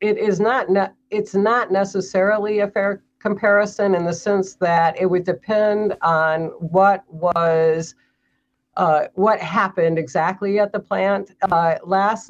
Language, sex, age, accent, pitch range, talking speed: English, female, 50-69, American, 155-190 Hz, 140 wpm